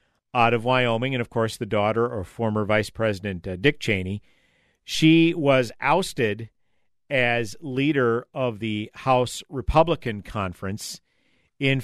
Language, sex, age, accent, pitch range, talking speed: English, male, 50-69, American, 100-130 Hz, 130 wpm